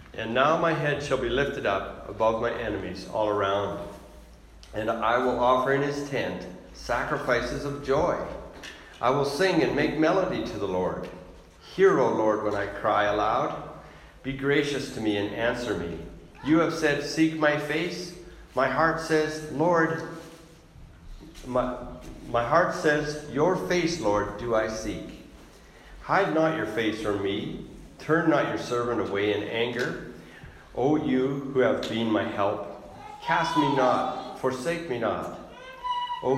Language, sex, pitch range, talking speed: English, male, 105-150 Hz, 155 wpm